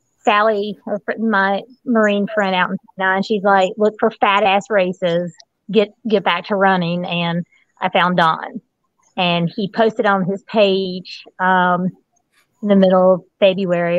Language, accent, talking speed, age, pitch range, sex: English, American, 155 wpm, 30-49, 175-215 Hz, female